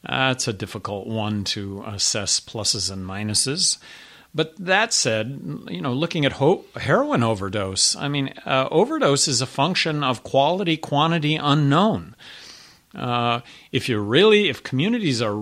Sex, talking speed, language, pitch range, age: male, 150 wpm, English, 115-145 Hz, 50-69